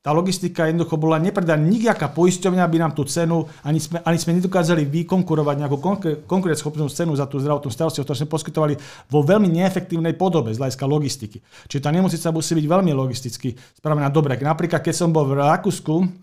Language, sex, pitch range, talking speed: Slovak, male, 135-165 Hz, 185 wpm